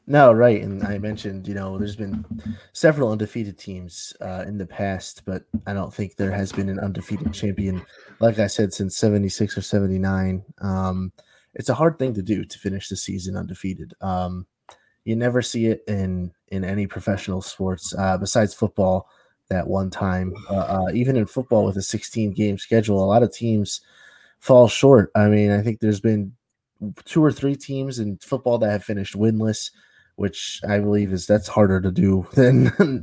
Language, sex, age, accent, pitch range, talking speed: English, male, 20-39, American, 95-110 Hz, 185 wpm